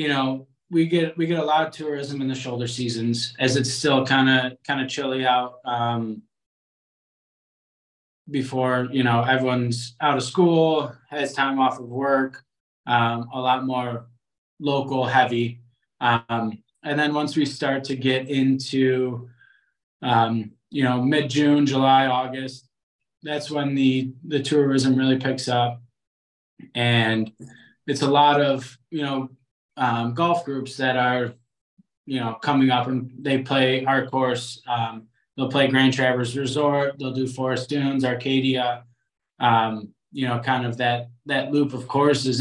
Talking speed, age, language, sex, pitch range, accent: 155 wpm, 20-39, English, male, 120-135 Hz, American